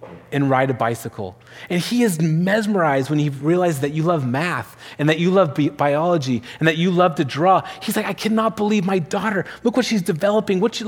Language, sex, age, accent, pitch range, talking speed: English, male, 30-49, American, 115-170 Hz, 215 wpm